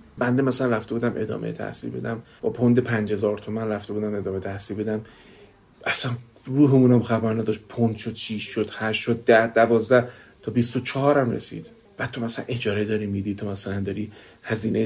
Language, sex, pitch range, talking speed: Persian, male, 110-135 Hz, 170 wpm